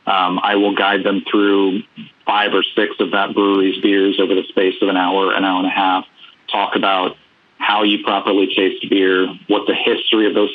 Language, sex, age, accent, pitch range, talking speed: English, male, 30-49, American, 95-105 Hz, 205 wpm